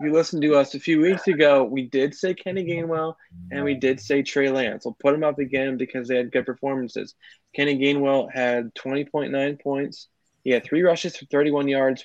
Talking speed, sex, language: 210 wpm, male, English